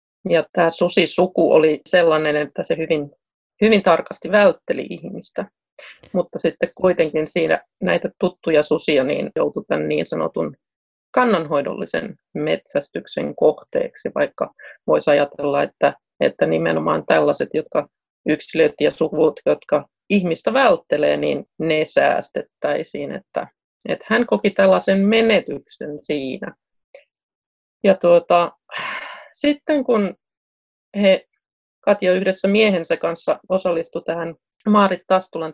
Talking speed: 105 wpm